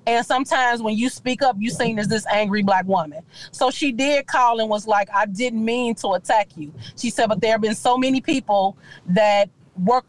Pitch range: 220-285 Hz